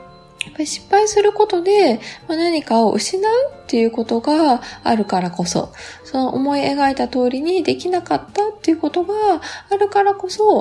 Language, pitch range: Japanese, 220-355 Hz